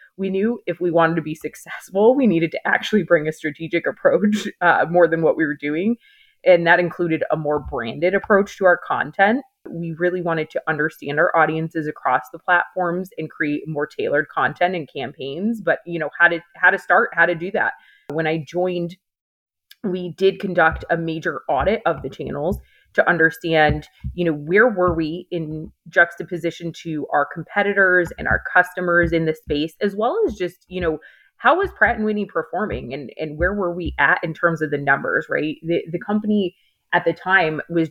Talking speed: 195 wpm